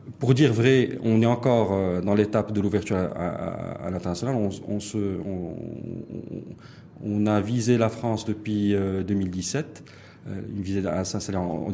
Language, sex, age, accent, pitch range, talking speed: French, male, 40-59, French, 95-115 Hz, 165 wpm